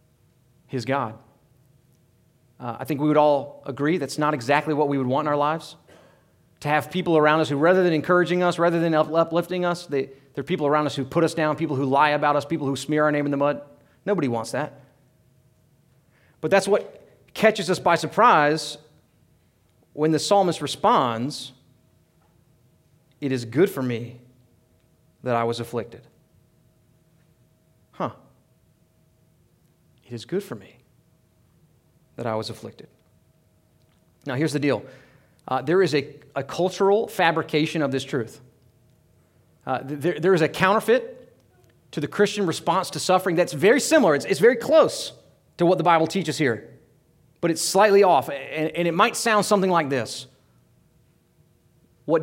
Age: 30-49